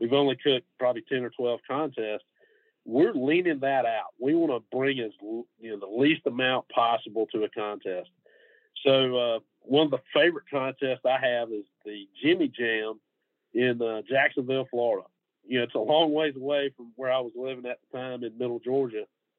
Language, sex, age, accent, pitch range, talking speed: English, male, 50-69, American, 125-155 Hz, 190 wpm